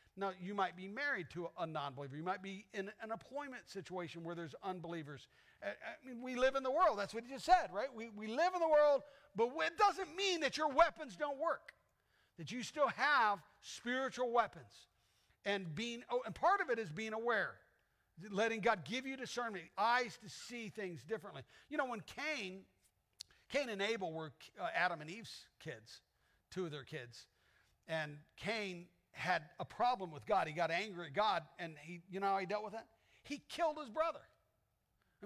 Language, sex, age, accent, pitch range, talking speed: English, male, 50-69, American, 180-250 Hz, 190 wpm